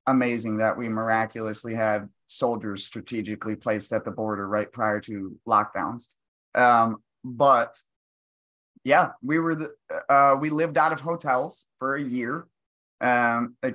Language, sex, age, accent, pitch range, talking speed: English, male, 20-39, American, 120-155 Hz, 140 wpm